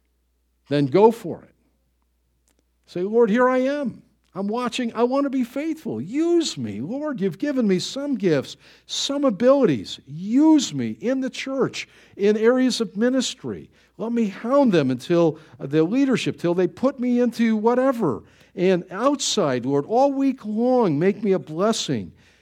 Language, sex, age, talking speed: English, male, 50-69, 155 wpm